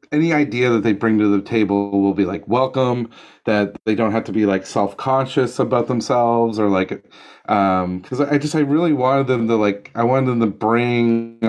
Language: English